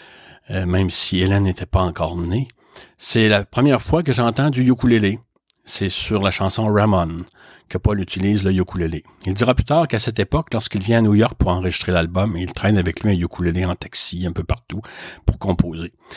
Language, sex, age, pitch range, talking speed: French, male, 60-79, 95-110 Hz, 200 wpm